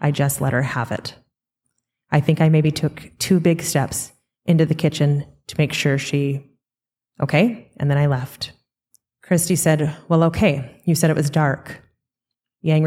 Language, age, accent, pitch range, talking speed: English, 20-39, American, 140-160 Hz, 170 wpm